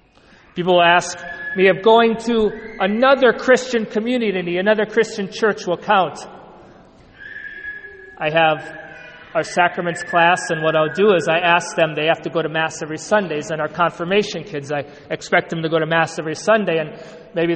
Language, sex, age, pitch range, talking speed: English, male, 40-59, 165-210 Hz, 170 wpm